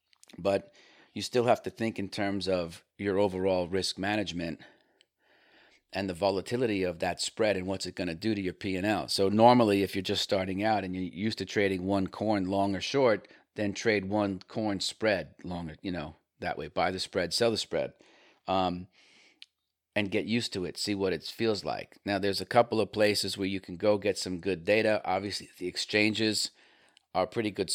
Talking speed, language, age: 200 wpm, English, 40-59